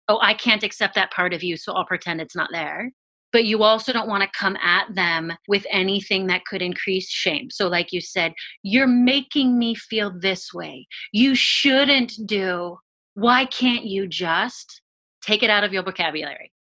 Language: English